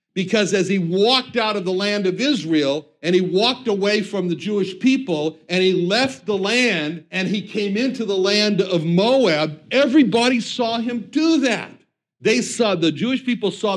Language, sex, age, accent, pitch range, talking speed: English, male, 60-79, American, 160-235 Hz, 185 wpm